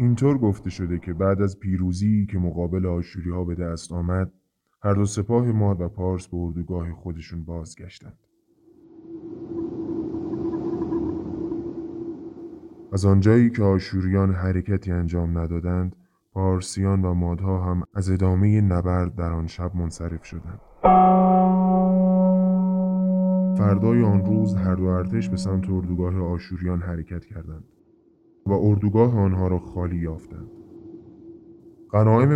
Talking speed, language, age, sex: 110 wpm, Persian, 20-39, male